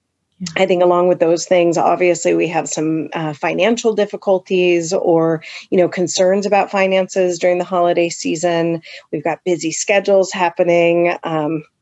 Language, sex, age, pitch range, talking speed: English, female, 30-49, 165-195 Hz, 145 wpm